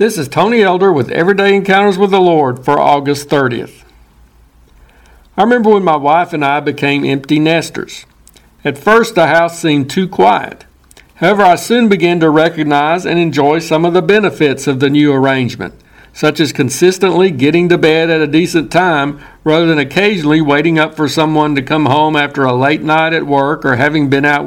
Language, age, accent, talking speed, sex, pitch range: English, 60-79, American, 185 wpm, male, 145-175 Hz